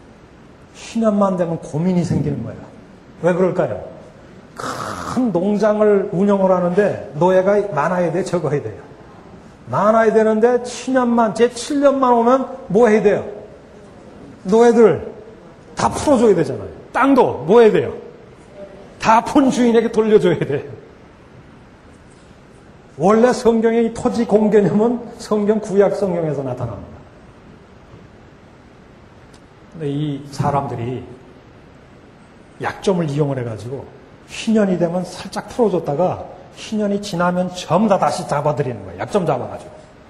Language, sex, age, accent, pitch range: Korean, male, 40-59, native, 170-220 Hz